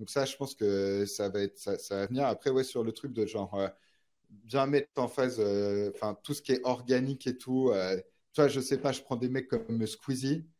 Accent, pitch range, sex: French, 105-125 Hz, male